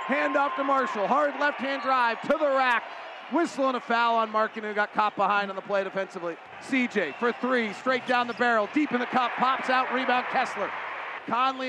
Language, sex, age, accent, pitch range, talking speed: English, male, 40-59, American, 225-275 Hz, 205 wpm